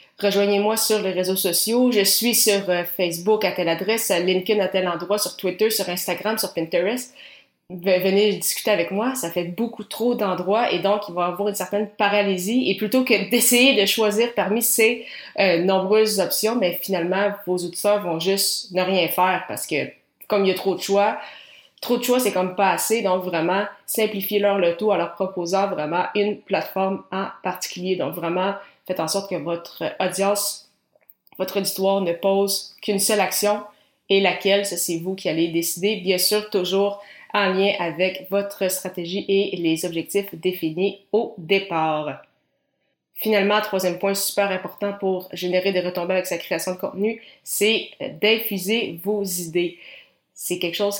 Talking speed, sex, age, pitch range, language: 170 wpm, female, 20-39, 185-205 Hz, French